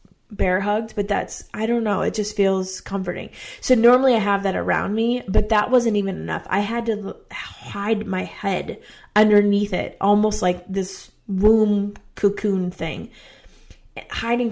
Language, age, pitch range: English, 20-39, 190-215 Hz